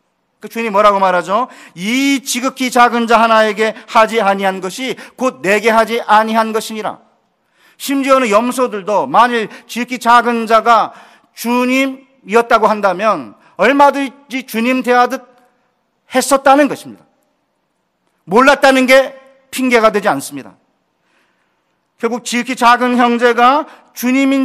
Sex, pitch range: male, 190-245 Hz